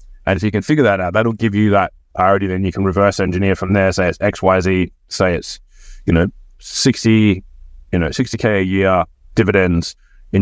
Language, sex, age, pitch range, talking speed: English, male, 30-49, 90-110 Hz, 195 wpm